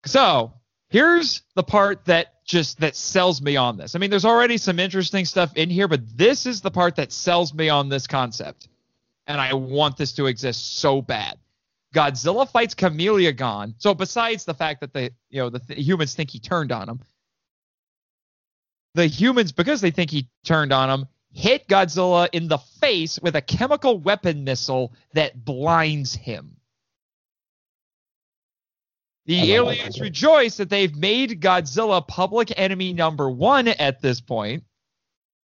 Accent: American